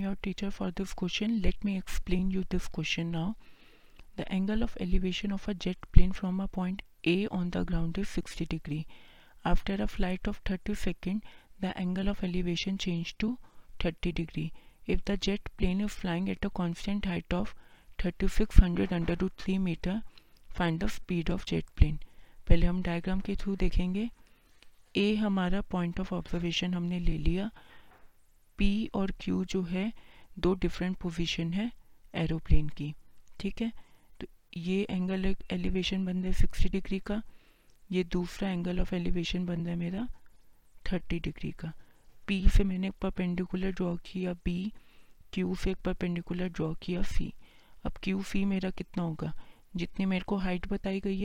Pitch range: 175-195 Hz